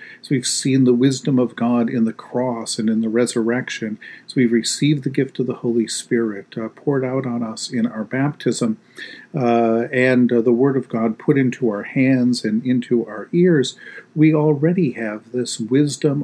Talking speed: 190 wpm